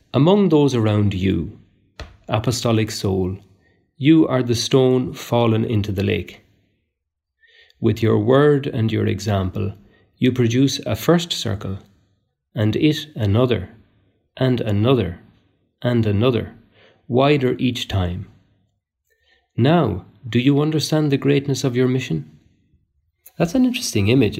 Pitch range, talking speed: 100-125 Hz, 120 wpm